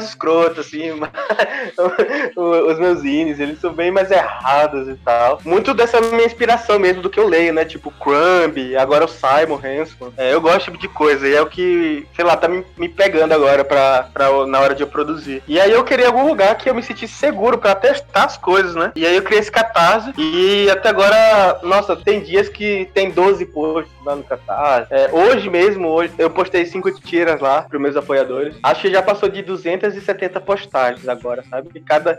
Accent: Brazilian